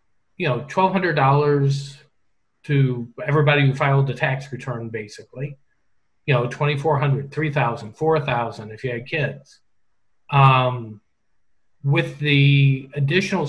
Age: 40-59